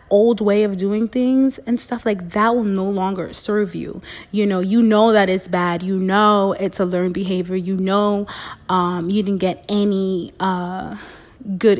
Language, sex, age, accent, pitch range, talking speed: English, female, 30-49, American, 180-215 Hz, 185 wpm